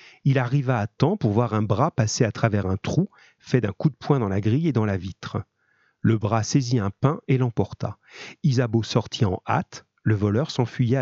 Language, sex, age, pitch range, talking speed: French, male, 40-59, 105-135 Hz, 210 wpm